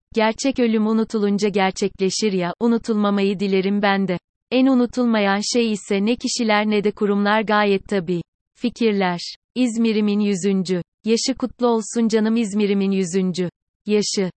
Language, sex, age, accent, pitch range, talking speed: Turkish, female, 30-49, native, 195-225 Hz, 125 wpm